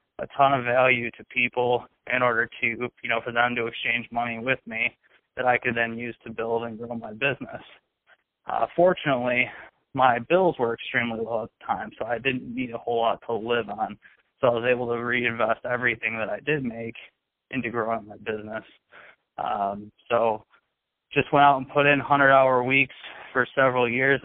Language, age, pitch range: English, 20-39, 115-130 Hz